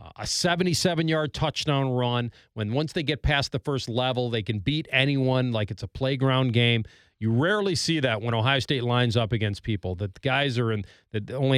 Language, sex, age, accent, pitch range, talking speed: English, male, 40-59, American, 110-145 Hz, 205 wpm